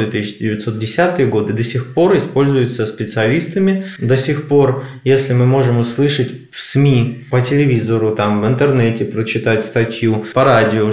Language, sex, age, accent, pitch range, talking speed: Russian, male, 20-39, native, 110-135 Hz, 135 wpm